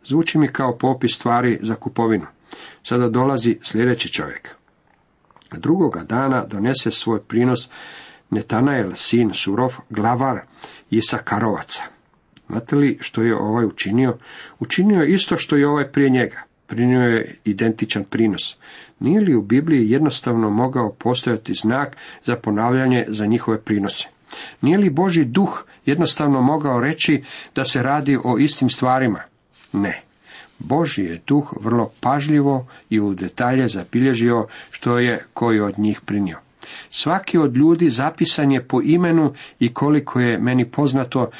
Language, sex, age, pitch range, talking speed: Croatian, male, 50-69, 115-140 Hz, 135 wpm